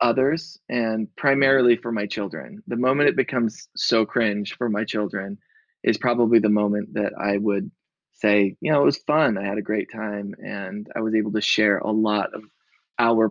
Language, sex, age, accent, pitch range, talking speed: English, male, 20-39, American, 105-135 Hz, 195 wpm